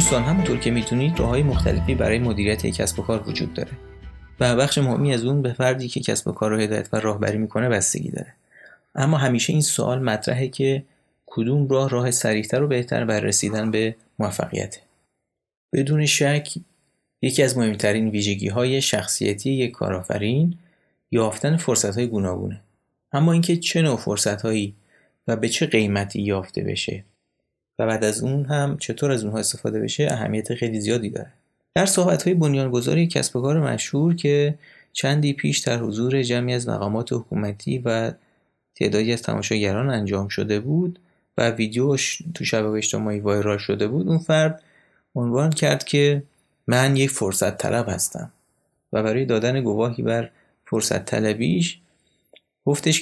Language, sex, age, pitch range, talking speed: Persian, male, 30-49, 110-145 Hz, 150 wpm